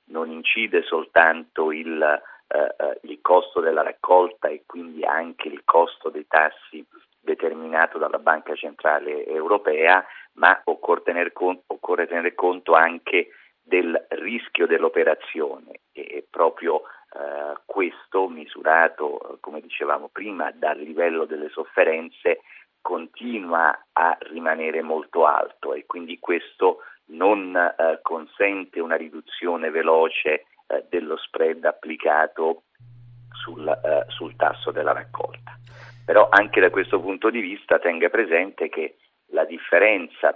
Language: Italian